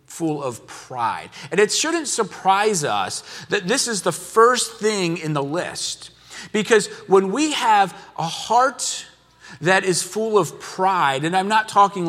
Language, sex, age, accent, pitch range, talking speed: English, male, 40-59, American, 150-220 Hz, 160 wpm